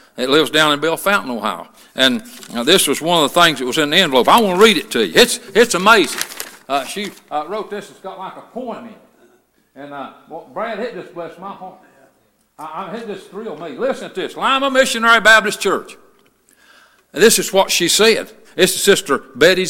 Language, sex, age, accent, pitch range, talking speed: English, male, 60-79, American, 185-240 Hz, 220 wpm